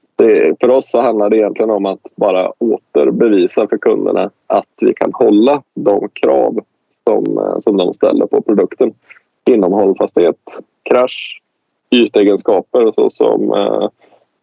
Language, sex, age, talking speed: Swedish, male, 20-39, 120 wpm